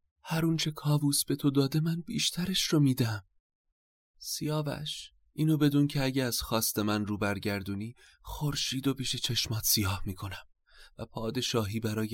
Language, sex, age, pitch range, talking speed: Persian, male, 30-49, 100-145 Hz, 145 wpm